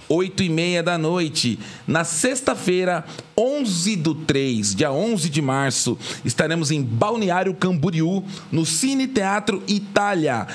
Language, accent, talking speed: Portuguese, Brazilian, 115 wpm